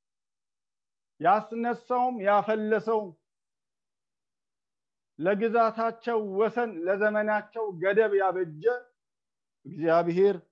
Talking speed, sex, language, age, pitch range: 55 wpm, male, English, 50-69, 165-220 Hz